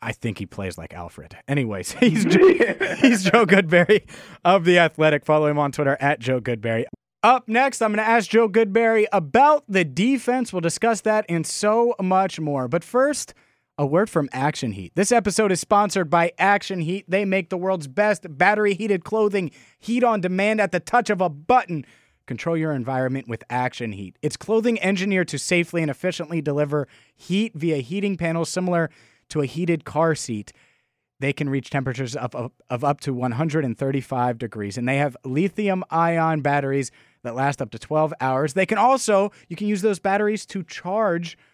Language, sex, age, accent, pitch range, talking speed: English, male, 30-49, American, 145-205 Hz, 180 wpm